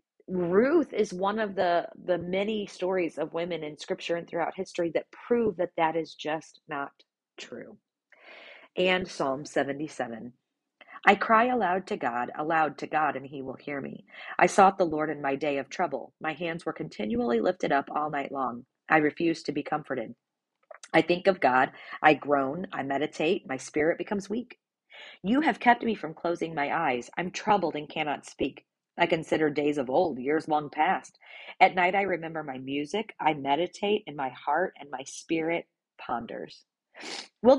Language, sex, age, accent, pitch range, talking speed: English, female, 40-59, American, 150-190 Hz, 175 wpm